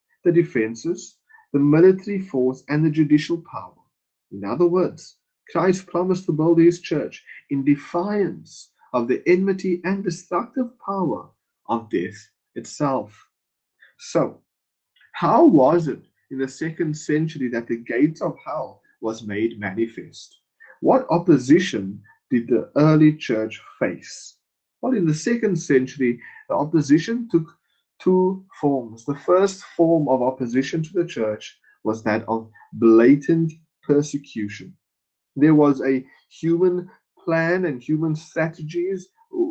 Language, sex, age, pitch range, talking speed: English, male, 30-49, 125-180 Hz, 125 wpm